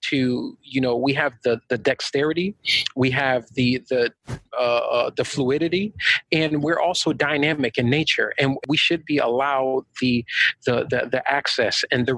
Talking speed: 165 wpm